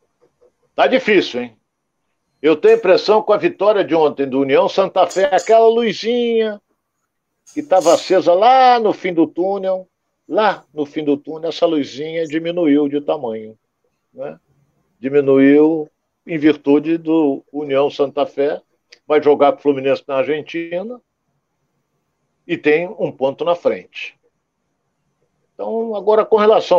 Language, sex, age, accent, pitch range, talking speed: Portuguese, male, 60-79, Brazilian, 145-225 Hz, 140 wpm